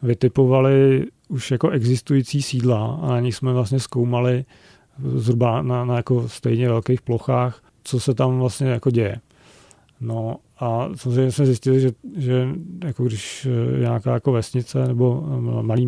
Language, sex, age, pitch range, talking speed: Czech, male, 40-59, 120-135 Hz, 145 wpm